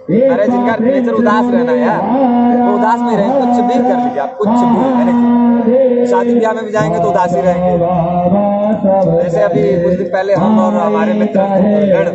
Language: Hindi